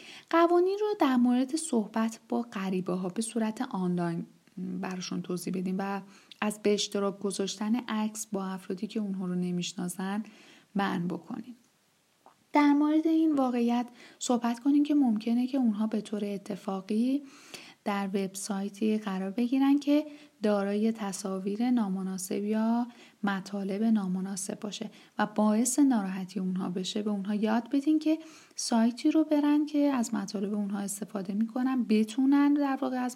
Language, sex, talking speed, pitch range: Persian, female, 135 wpm, 195-250 Hz